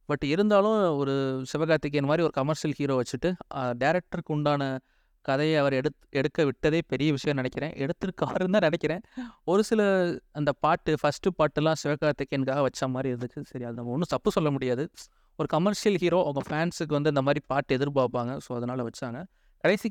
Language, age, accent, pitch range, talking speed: Tamil, 30-49, native, 130-165 Hz, 150 wpm